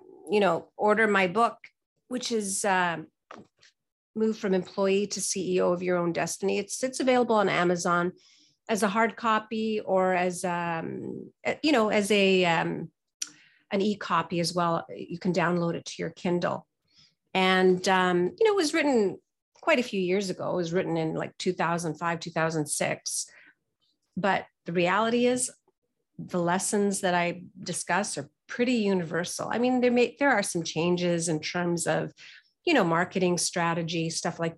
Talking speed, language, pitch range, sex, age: 160 wpm, English, 170-215 Hz, female, 40-59